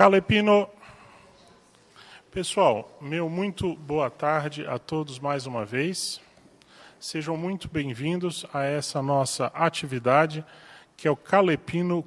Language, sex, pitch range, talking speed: Portuguese, male, 140-170 Hz, 110 wpm